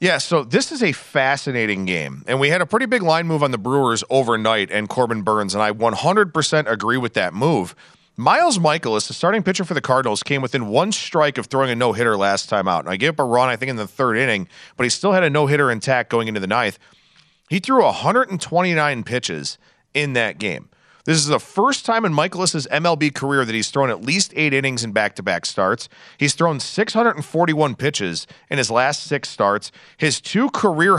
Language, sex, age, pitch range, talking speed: English, male, 40-59, 120-165 Hz, 210 wpm